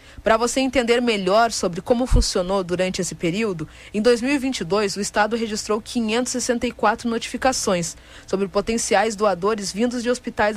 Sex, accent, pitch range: female, Brazilian, 205-255 Hz